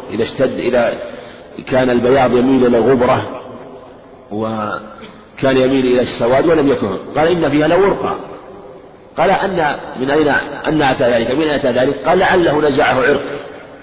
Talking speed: 145 wpm